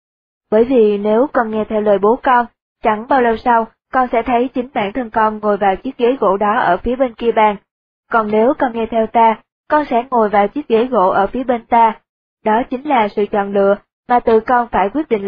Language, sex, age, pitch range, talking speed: Vietnamese, female, 20-39, 215-250 Hz, 235 wpm